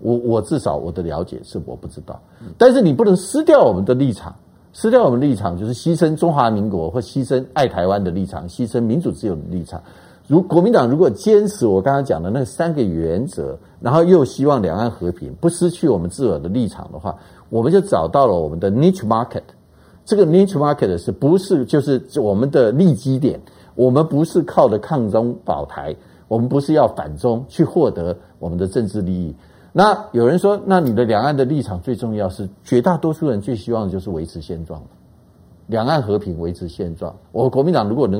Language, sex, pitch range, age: Chinese, male, 105-165 Hz, 50-69